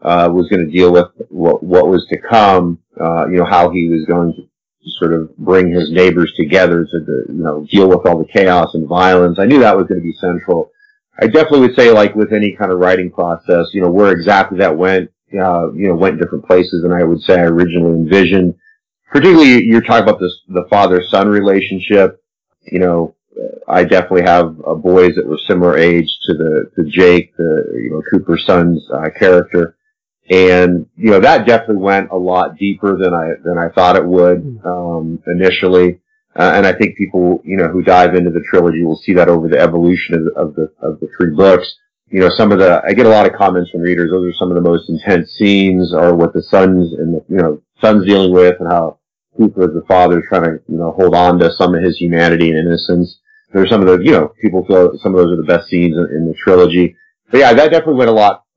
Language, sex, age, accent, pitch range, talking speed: English, male, 30-49, American, 85-95 Hz, 230 wpm